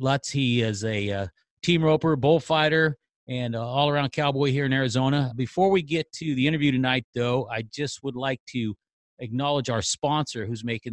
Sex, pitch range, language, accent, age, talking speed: male, 115-150 Hz, English, American, 40-59, 180 wpm